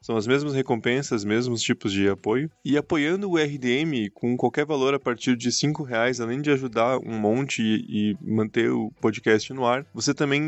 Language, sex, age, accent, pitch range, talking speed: Portuguese, male, 20-39, Brazilian, 110-135 Hz, 190 wpm